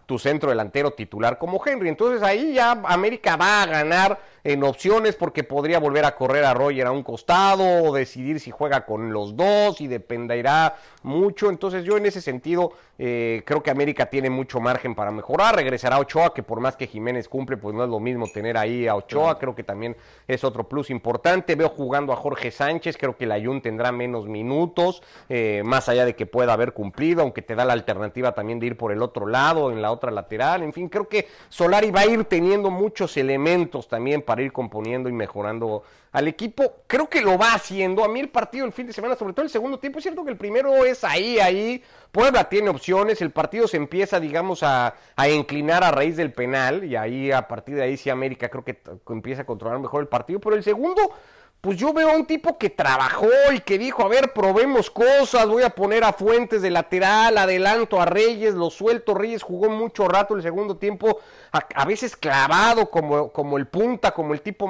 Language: Spanish